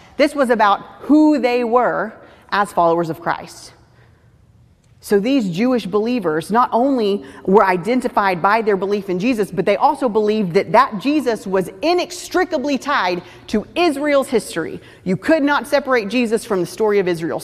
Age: 30-49